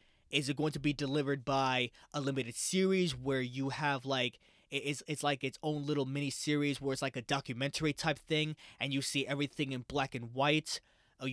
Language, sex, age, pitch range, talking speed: English, male, 20-39, 135-160 Hz, 195 wpm